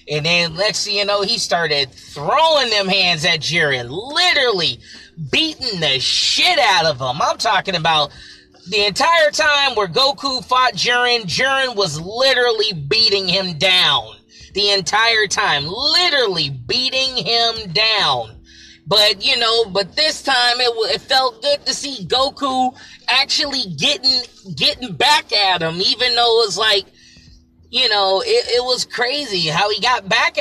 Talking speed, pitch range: 150 wpm, 185-250 Hz